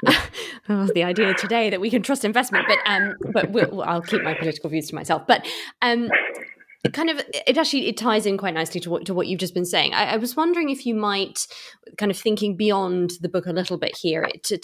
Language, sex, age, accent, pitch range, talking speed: English, female, 20-39, British, 160-215 Hz, 240 wpm